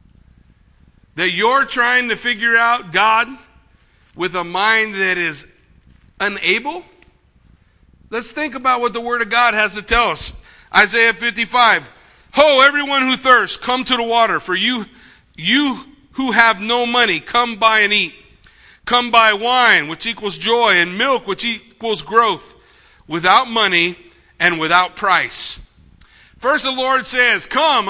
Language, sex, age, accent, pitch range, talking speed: English, male, 50-69, American, 215-260 Hz, 145 wpm